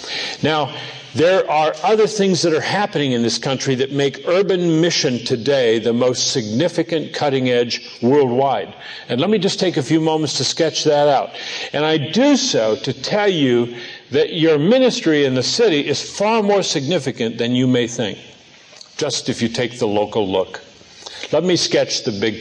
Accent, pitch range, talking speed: American, 125-175 Hz, 180 wpm